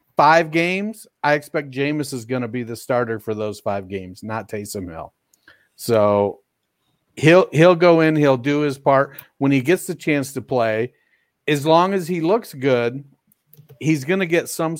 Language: English